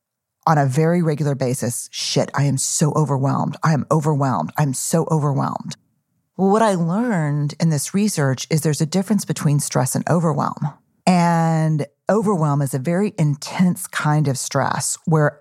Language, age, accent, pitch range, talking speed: English, 40-59, American, 140-170 Hz, 160 wpm